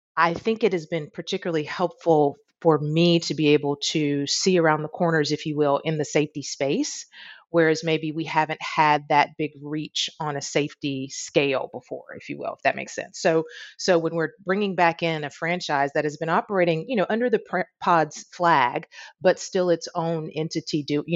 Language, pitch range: English, 145-165 Hz